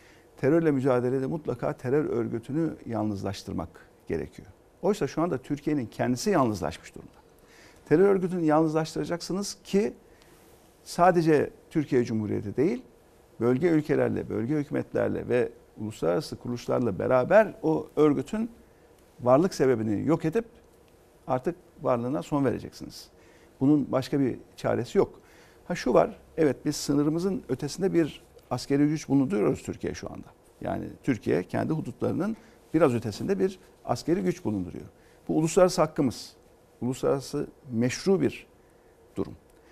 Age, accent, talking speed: 50-69, native, 115 wpm